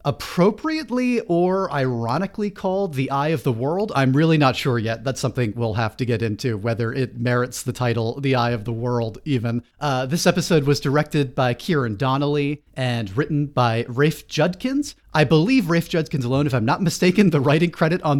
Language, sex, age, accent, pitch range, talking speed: English, male, 40-59, American, 120-160 Hz, 190 wpm